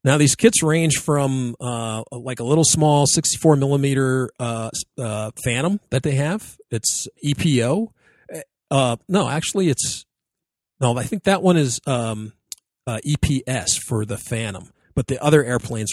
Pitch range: 120-150 Hz